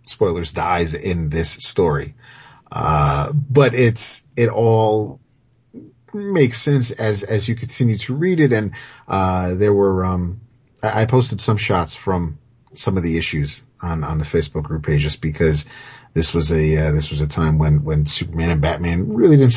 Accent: American